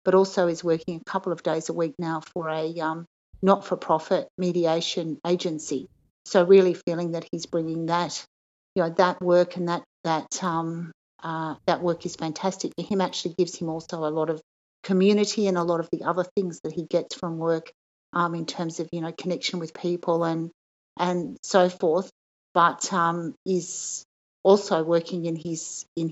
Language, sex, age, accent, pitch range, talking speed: English, female, 50-69, Australian, 165-180 Hz, 180 wpm